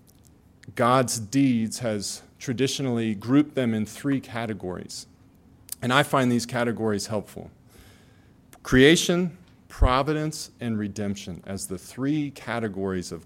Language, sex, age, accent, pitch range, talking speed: English, male, 40-59, American, 105-130 Hz, 110 wpm